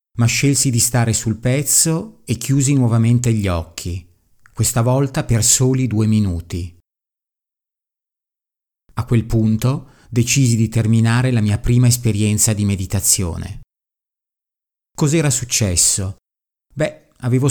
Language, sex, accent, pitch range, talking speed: Italian, male, native, 105-125 Hz, 115 wpm